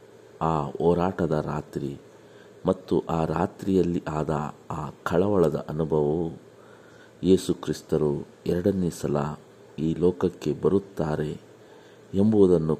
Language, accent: Kannada, native